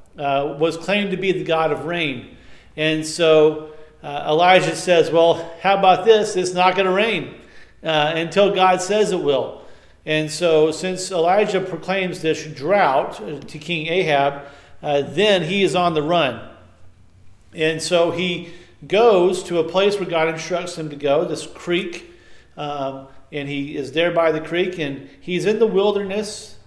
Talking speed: 165 wpm